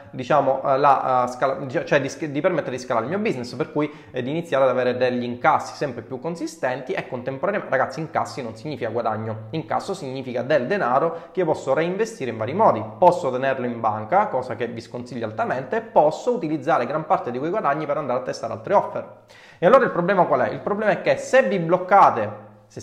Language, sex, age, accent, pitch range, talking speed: Italian, male, 20-39, native, 115-165 Hz, 200 wpm